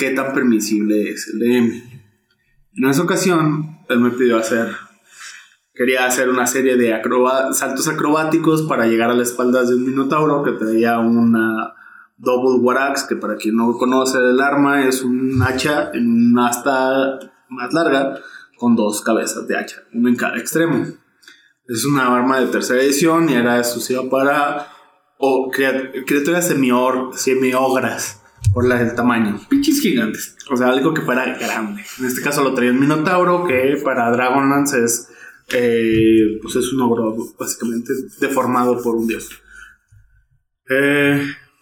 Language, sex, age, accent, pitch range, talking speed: Spanish, male, 20-39, Mexican, 120-140 Hz, 155 wpm